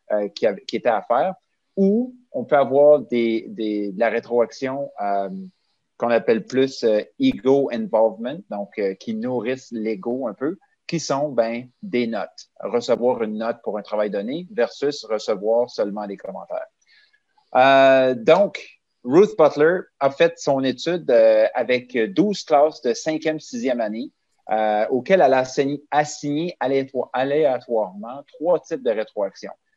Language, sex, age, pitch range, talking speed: French, male, 30-49, 115-170 Hz, 155 wpm